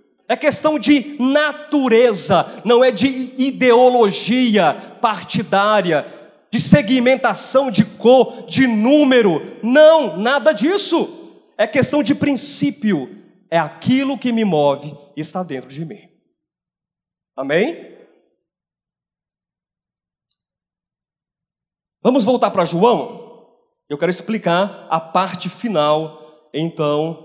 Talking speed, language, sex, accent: 95 wpm, Portuguese, male, Brazilian